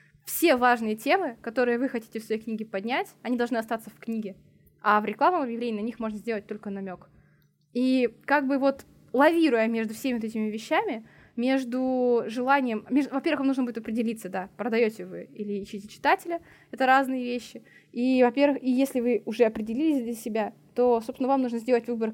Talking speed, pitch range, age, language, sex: 175 wpm, 220-265 Hz, 20-39, Russian, female